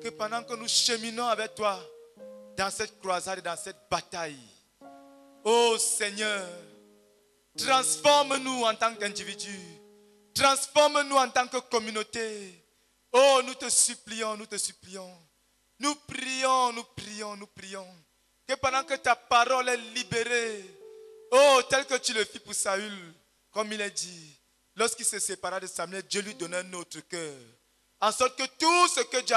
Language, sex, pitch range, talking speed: English, male, 205-270 Hz, 155 wpm